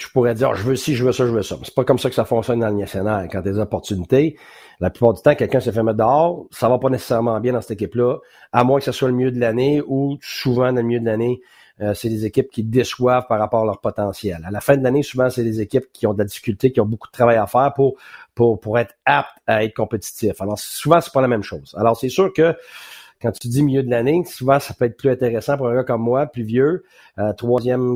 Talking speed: 290 wpm